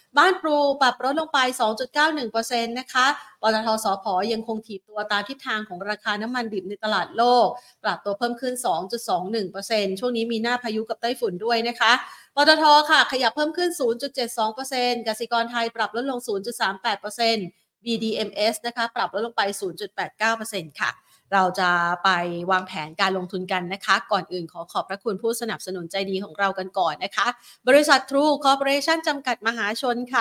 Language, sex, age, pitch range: Thai, female, 30-49, 195-240 Hz